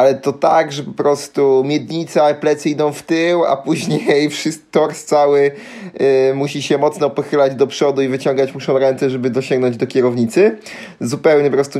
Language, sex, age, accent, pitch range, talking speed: Polish, male, 20-39, native, 125-150 Hz, 165 wpm